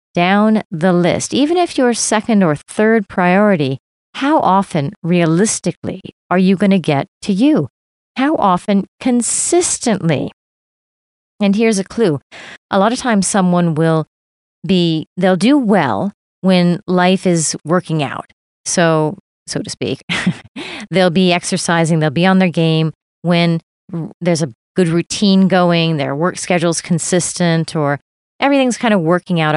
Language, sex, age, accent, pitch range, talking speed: English, female, 40-59, American, 160-200 Hz, 140 wpm